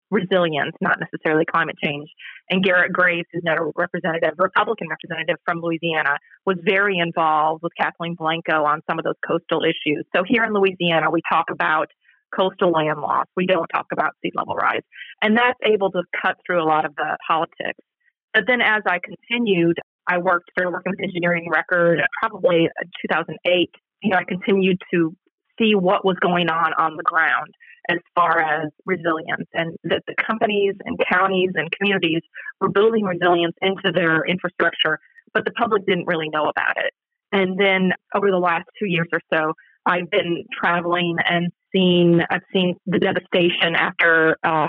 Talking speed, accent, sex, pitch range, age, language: 175 wpm, American, female, 165-195 Hz, 30-49, English